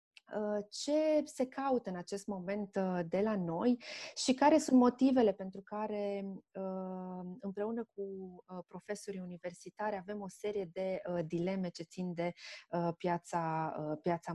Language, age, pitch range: Romanian, 20-39, 185-220 Hz